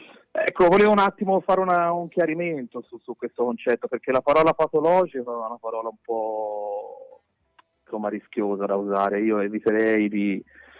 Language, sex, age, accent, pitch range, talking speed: Italian, male, 30-49, native, 110-135 Hz, 145 wpm